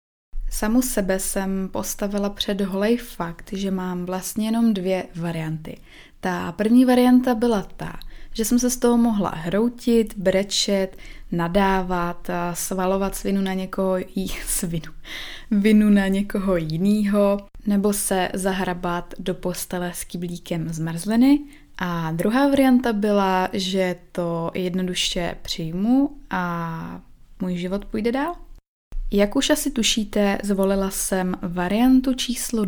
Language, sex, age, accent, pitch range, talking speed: Czech, female, 20-39, native, 185-220 Hz, 120 wpm